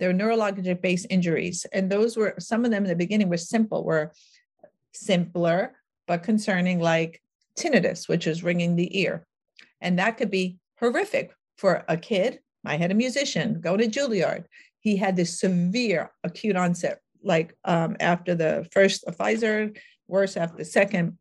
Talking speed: 160 wpm